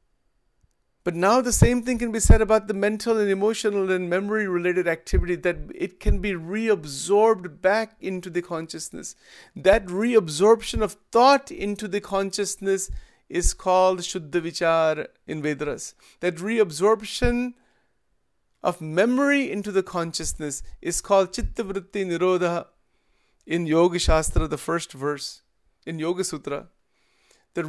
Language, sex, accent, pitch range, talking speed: English, male, Indian, 170-220 Hz, 130 wpm